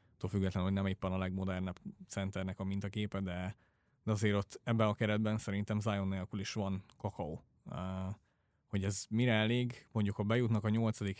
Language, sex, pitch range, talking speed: English, male, 95-110 Hz, 165 wpm